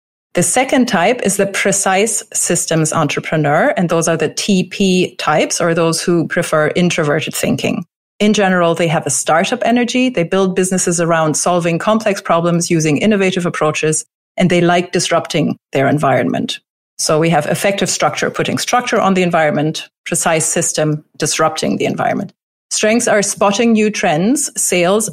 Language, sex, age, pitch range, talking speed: English, female, 30-49, 160-200 Hz, 155 wpm